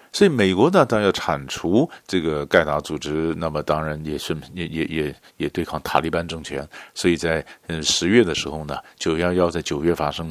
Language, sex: Chinese, male